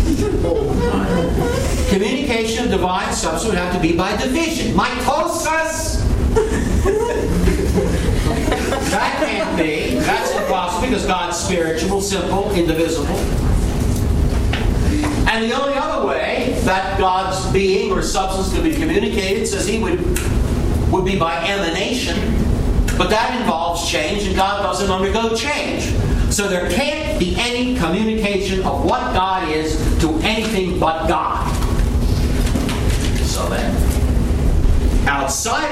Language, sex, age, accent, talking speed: English, male, 60-79, American, 115 wpm